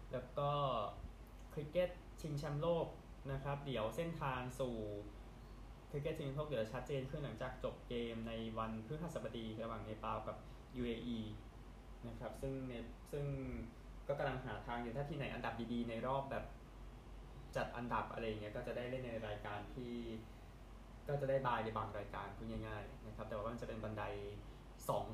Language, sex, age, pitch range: Thai, male, 20-39, 115-135 Hz